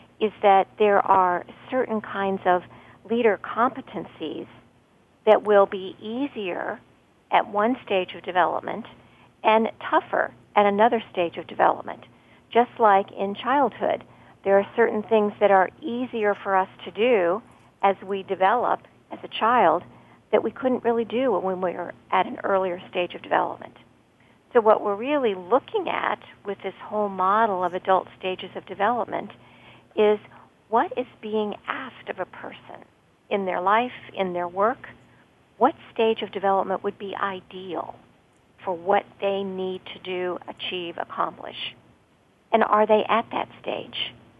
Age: 50-69